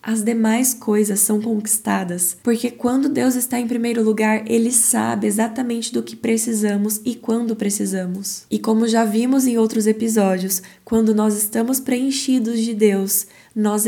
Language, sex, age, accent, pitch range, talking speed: Portuguese, female, 10-29, Brazilian, 205-235 Hz, 150 wpm